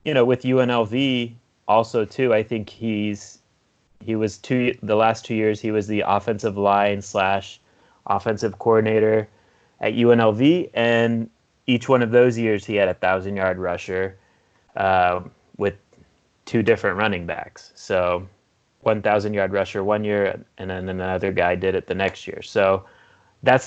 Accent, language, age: American, English, 30-49